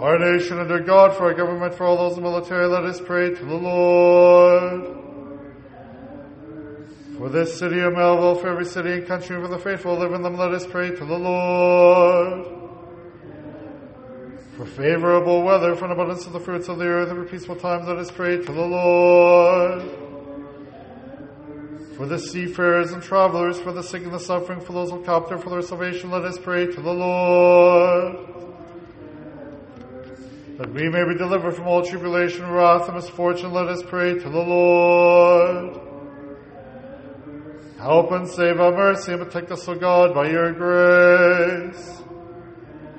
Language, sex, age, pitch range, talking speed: English, male, 40-59, 170-180 Hz, 165 wpm